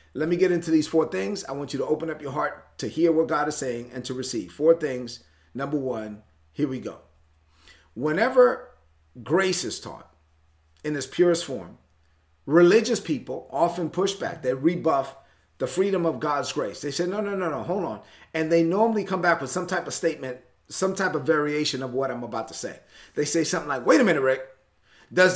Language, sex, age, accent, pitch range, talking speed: English, male, 30-49, American, 125-175 Hz, 210 wpm